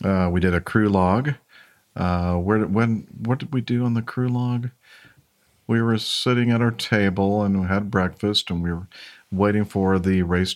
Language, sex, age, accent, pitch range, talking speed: English, male, 50-69, American, 85-105 Hz, 195 wpm